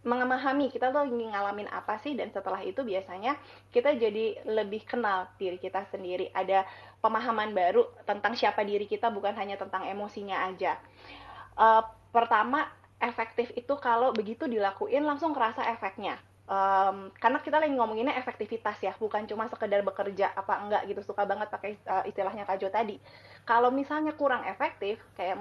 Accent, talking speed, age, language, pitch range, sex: native, 160 wpm, 20-39, Indonesian, 195-250 Hz, female